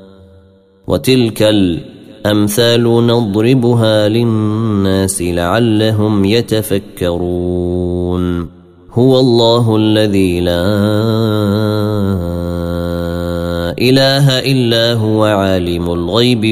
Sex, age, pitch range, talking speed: male, 30-49, 90-110 Hz, 55 wpm